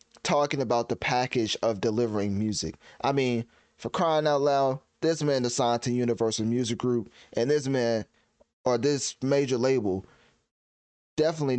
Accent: American